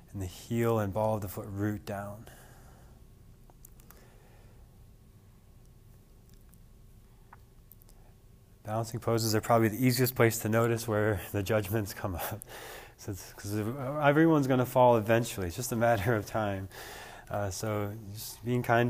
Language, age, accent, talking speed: English, 20-39, American, 130 wpm